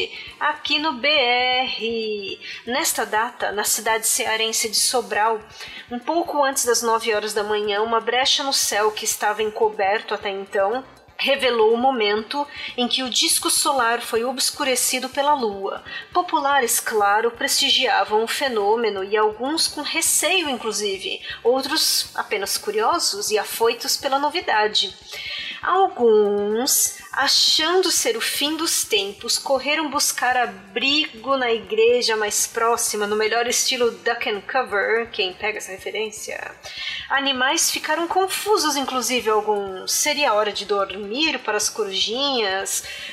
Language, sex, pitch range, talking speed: Portuguese, female, 220-305 Hz, 130 wpm